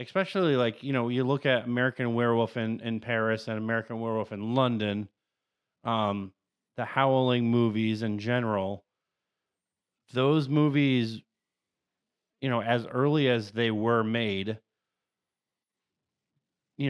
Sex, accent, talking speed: male, American, 120 wpm